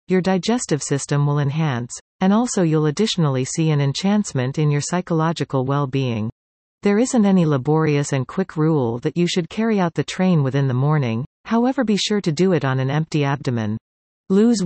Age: 40-59